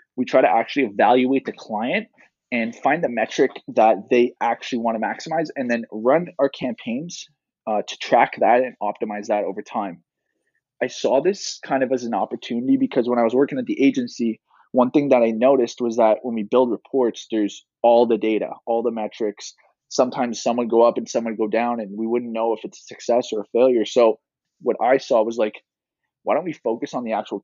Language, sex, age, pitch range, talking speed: English, male, 20-39, 110-135 Hz, 215 wpm